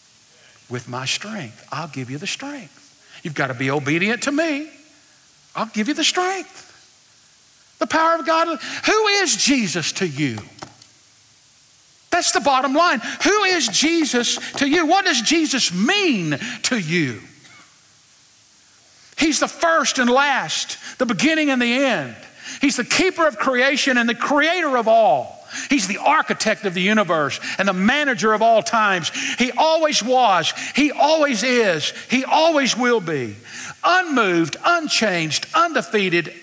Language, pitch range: English, 190-285 Hz